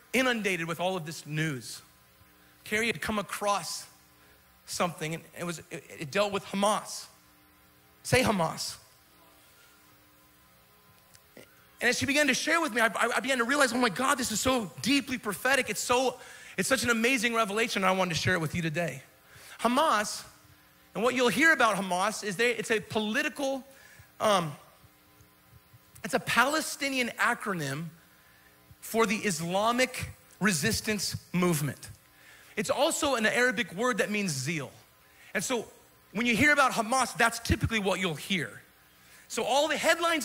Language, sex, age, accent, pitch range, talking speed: English, male, 30-49, American, 160-245 Hz, 150 wpm